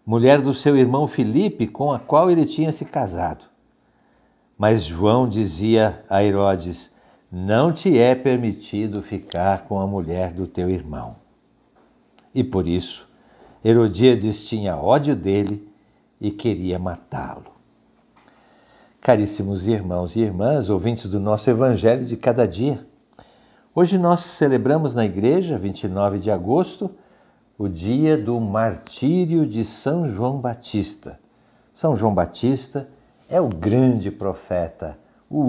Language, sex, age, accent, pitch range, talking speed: Portuguese, male, 60-79, Brazilian, 100-135 Hz, 125 wpm